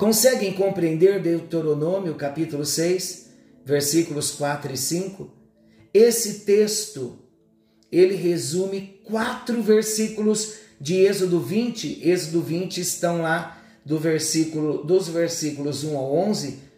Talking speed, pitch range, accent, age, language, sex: 105 wpm, 145-185 Hz, Brazilian, 40-59, Portuguese, male